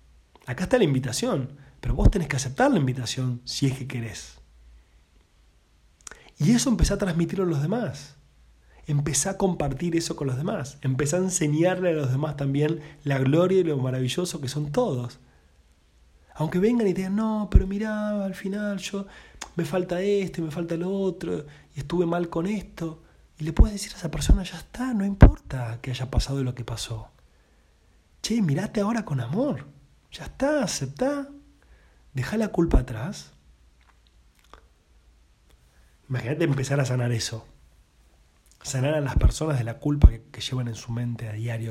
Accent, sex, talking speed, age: Argentinian, male, 170 wpm, 30-49